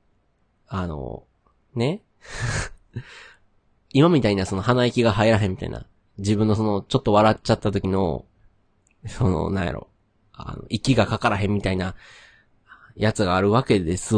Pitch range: 95-125 Hz